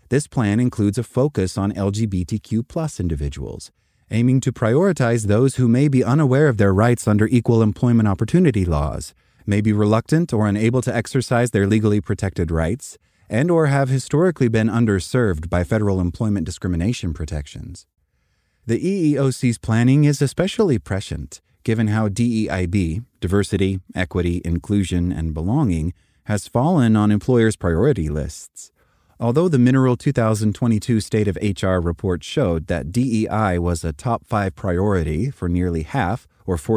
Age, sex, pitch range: 30-49, male, 90-120 Hz